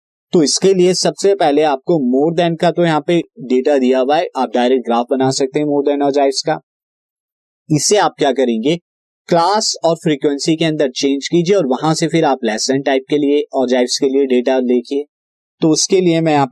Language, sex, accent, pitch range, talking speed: Hindi, male, native, 130-170 Hz, 205 wpm